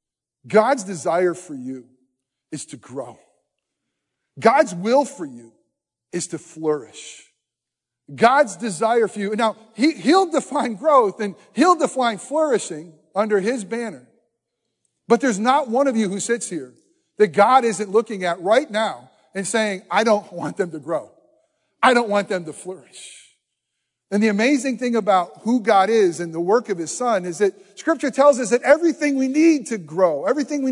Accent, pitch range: American, 185-245 Hz